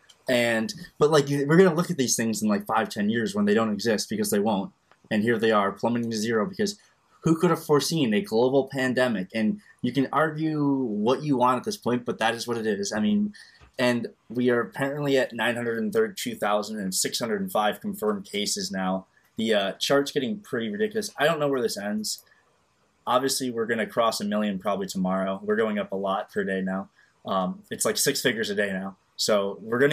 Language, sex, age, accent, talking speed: English, male, 20-39, American, 210 wpm